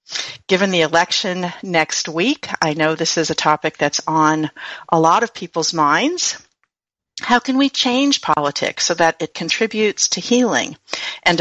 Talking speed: 160 wpm